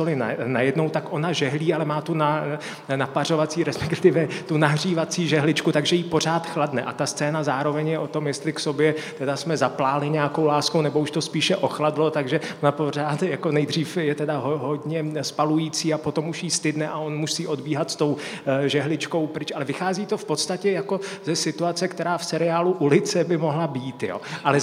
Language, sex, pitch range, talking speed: Slovak, male, 150-170 Hz, 190 wpm